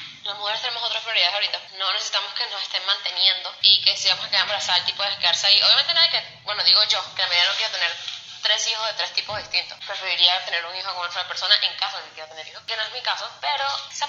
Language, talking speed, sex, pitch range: English, 260 wpm, female, 180-235 Hz